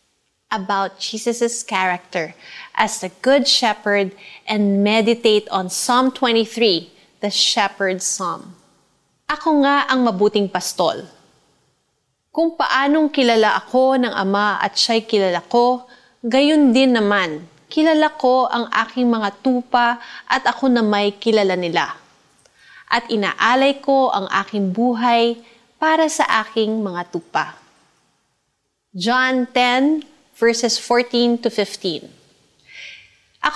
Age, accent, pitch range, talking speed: 30-49, native, 195-250 Hz, 105 wpm